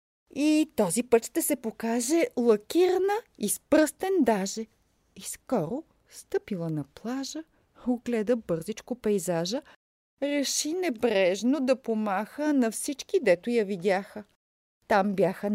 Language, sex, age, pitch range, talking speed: Bulgarian, female, 50-69, 190-260 Hz, 115 wpm